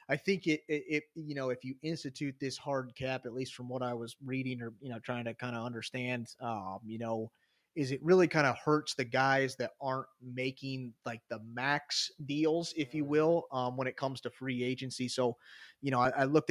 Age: 30-49